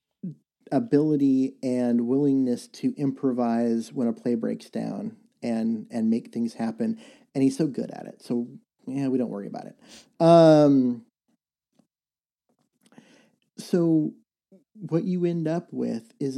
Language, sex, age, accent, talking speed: English, male, 40-59, American, 130 wpm